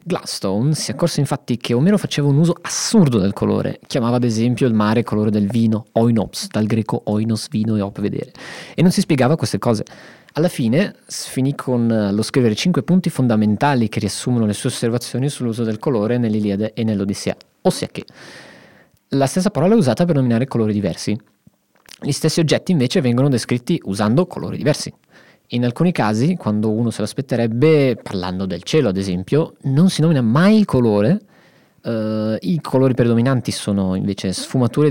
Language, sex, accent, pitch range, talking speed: Italian, male, native, 110-145 Hz, 170 wpm